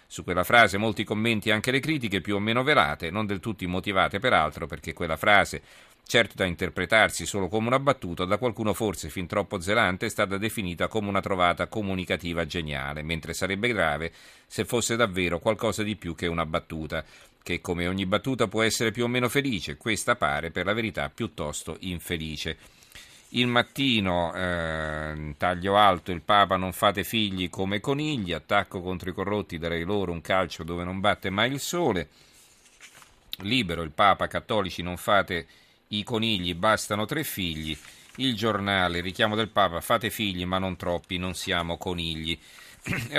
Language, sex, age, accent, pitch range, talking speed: Italian, male, 40-59, native, 85-110 Hz, 170 wpm